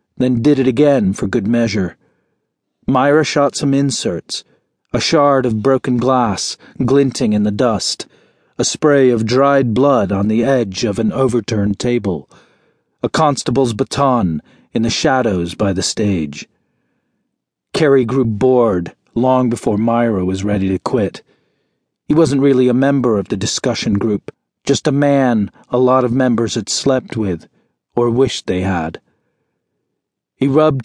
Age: 40-59